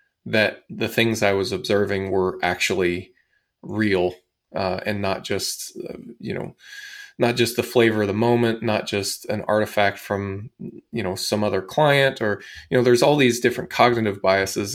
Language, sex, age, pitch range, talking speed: English, male, 20-39, 105-140 Hz, 170 wpm